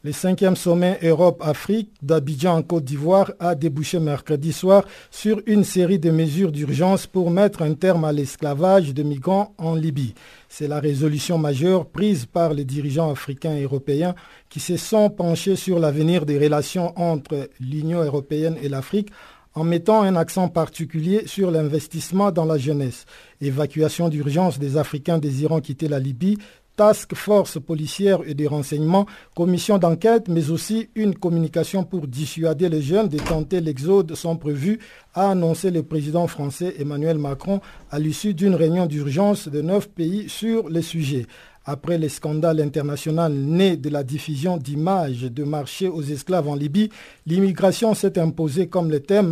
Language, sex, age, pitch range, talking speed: French, male, 50-69, 150-185 Hz, 160 wpm